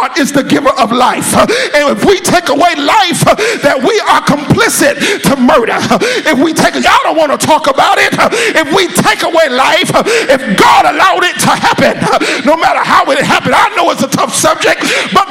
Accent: American